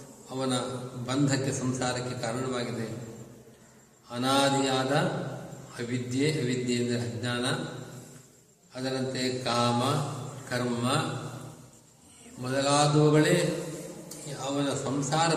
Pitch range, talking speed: 125-145 Hz, 60 wpm